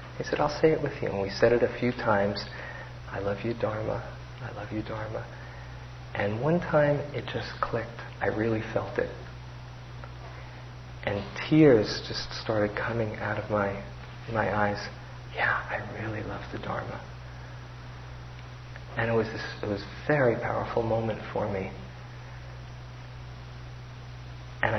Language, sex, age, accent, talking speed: English, male, 40-59, American, 145 wpm